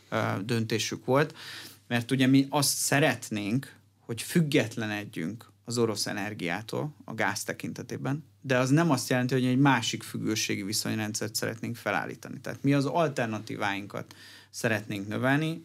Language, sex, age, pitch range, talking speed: Hungarian, male, 30-49, 110-130 Hz, 125 wpm